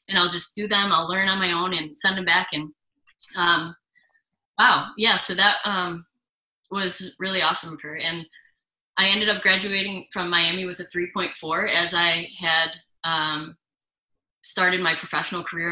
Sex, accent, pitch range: female, American, 170-195 Hz